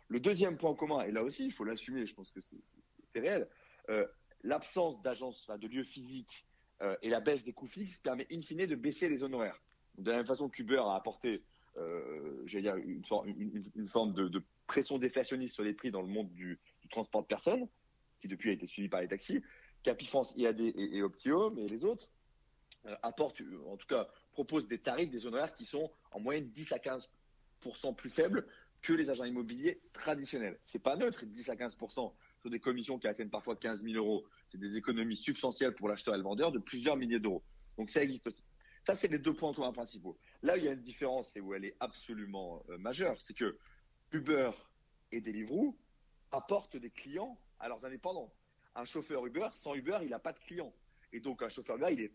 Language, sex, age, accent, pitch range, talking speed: French, male, 40-59, French, 110-155 Hz, 205 wpm